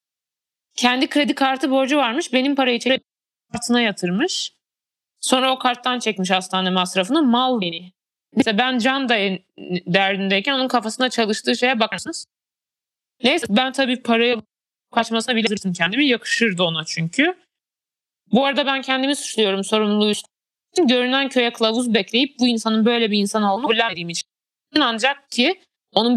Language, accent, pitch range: Turkish, native, 210-265 Hz